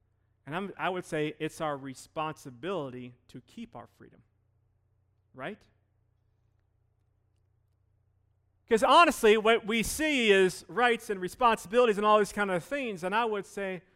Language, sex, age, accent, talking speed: English, male, 30-49, American, 140 wpm